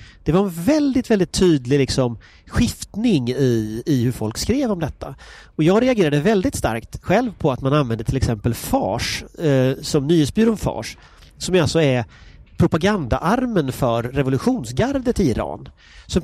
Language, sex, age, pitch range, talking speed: English, male, 30-49, 120-190 Hz, 145 wpm